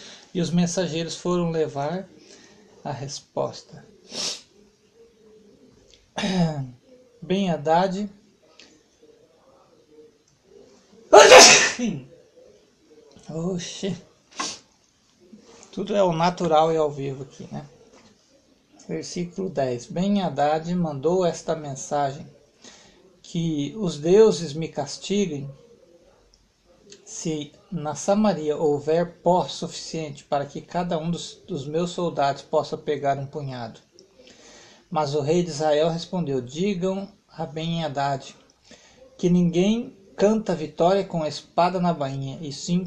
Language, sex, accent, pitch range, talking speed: Portuguese, male, Brazilian, 150-195 Hz, 100 wpm